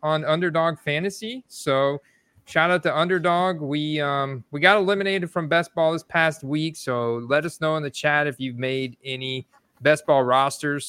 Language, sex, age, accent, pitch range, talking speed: English, male, 30-49, American, 135-175 Hz, 180 wpm